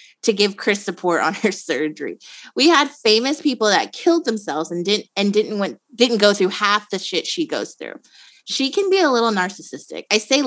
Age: 20-39